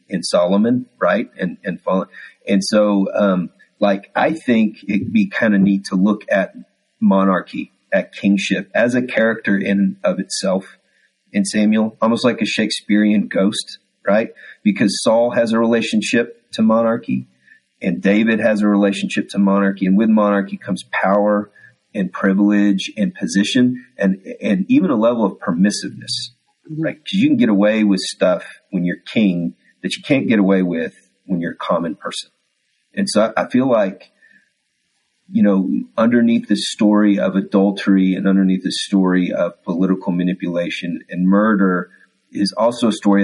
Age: 40-59